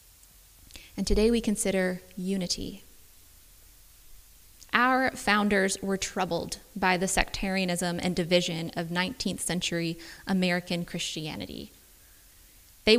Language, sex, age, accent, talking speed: English, female, 20-39, American, 90 wpm